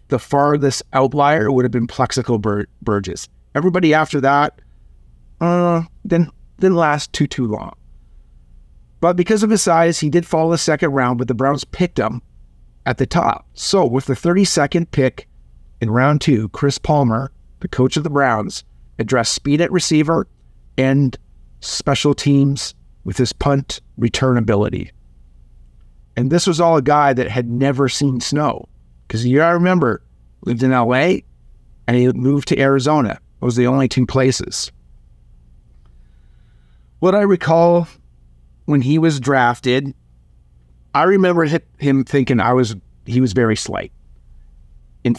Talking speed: 145 wpm